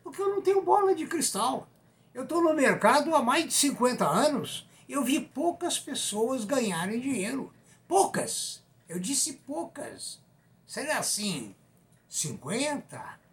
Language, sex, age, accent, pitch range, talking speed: Portuguese, male, 60-79, Brazilian, 185-260 Hz, 130 wpm